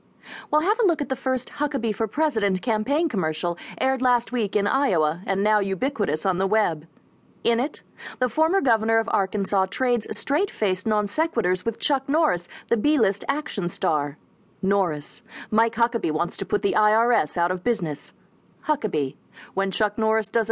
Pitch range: 200-270 Hz